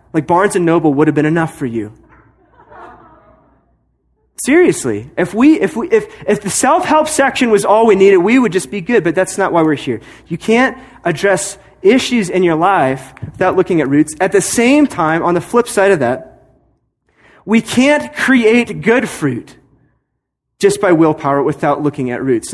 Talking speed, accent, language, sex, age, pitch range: 180 wpm, American, English, male, 30-49, 140-190 Hz